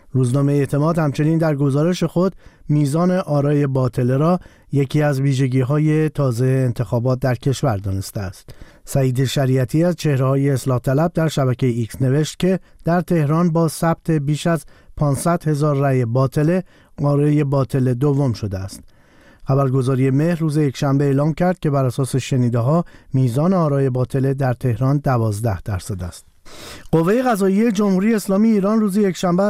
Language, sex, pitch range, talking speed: Persian, male, 130-165 Hz, 140 wpm